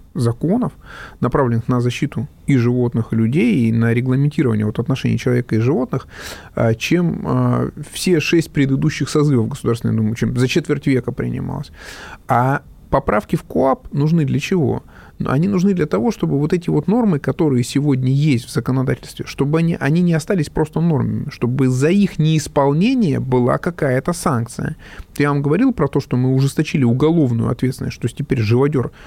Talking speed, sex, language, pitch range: 155 wpm, male, Russian, 120-150 Hz